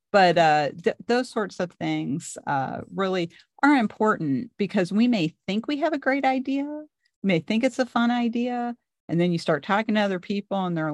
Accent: American